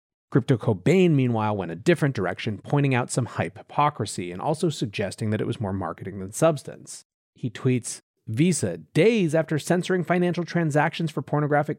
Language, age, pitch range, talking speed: English, 30-49, 110-155 Hz, 165 wpm